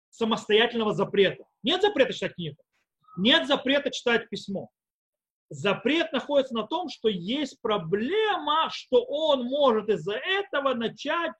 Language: Russian